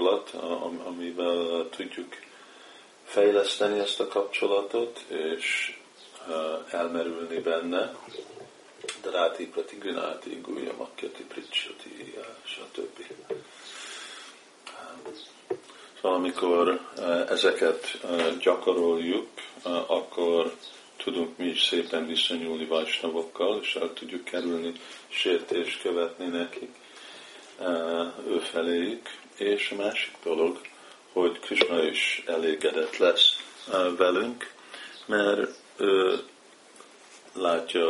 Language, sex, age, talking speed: Hungarian, male, 50-69, 80 wpm